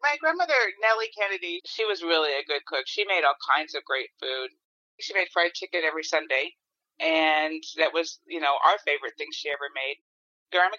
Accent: American